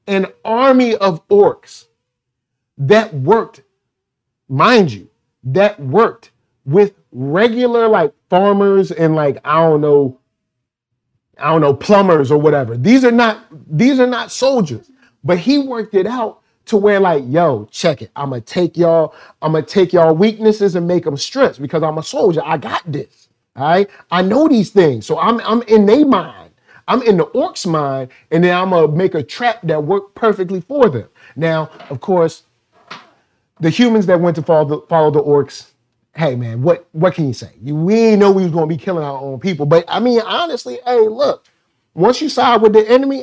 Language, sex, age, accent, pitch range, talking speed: English, male, 40-59, American, 135-220 Hz, 190 wpm